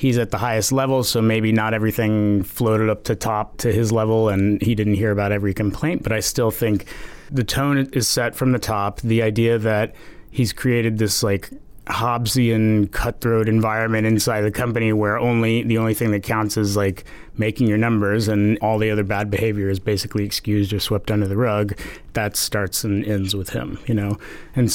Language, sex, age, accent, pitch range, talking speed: English, male, 30-49, American, 105-125 Hz, 200 wpm